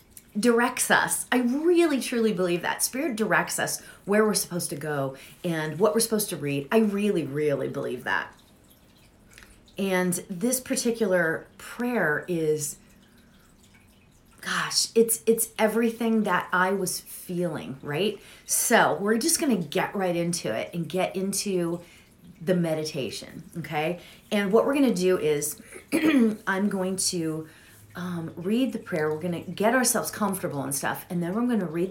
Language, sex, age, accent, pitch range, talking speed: English, female, 30-49, American, 145-205 Hz, 155 wpm